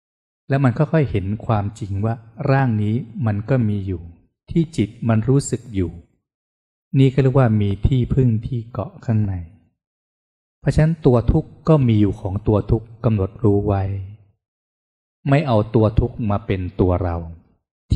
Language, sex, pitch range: Thai, male, 95-125 Hz